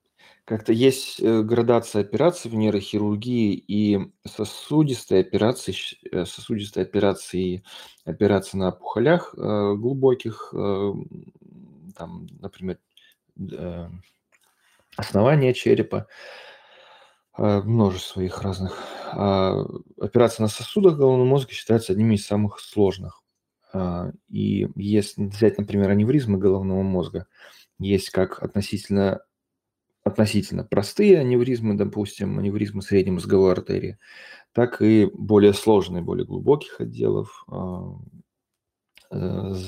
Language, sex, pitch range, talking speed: Russian, male, 100-120 Hz, 90 wpm